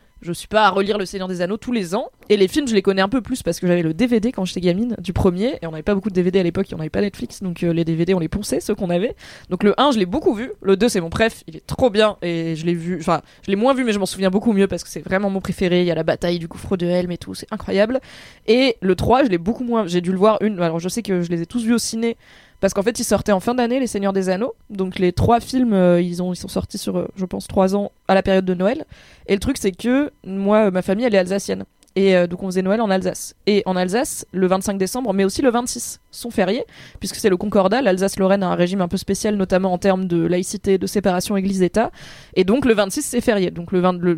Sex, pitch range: female, 180-220 Hz